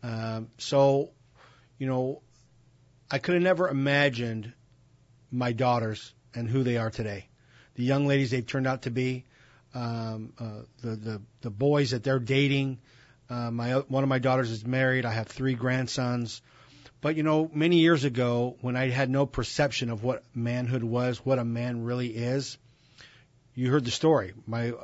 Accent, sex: American, male